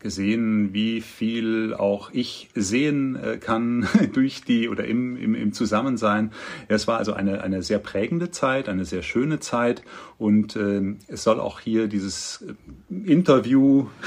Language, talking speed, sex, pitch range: German, 145 wpm, male, 100-125 Hz